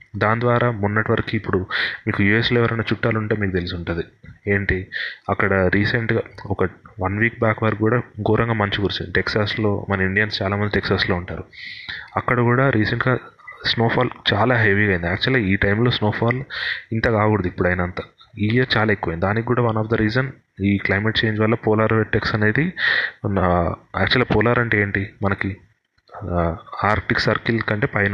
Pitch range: 100-115 Hz